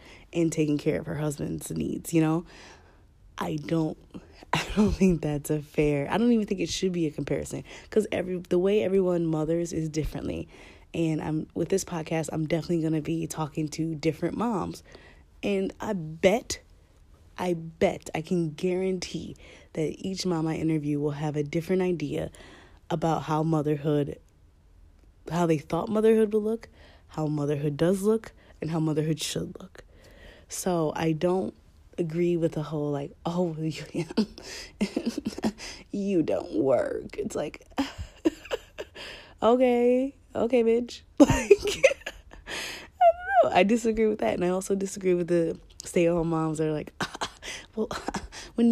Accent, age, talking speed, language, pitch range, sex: American, 20-39, 150 wpm, English, 155-200 Hz, female